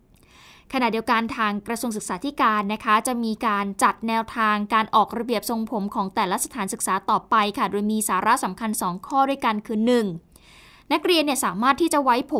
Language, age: Thai, 20-39